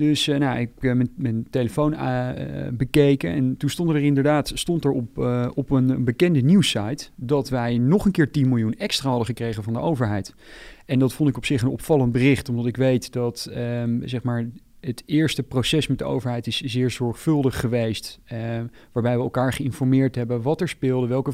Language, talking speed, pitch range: Dutch, 180 wpm, 120-140 Hz